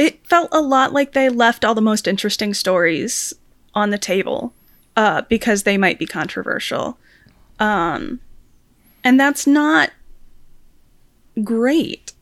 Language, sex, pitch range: English, female, 205-260 Hz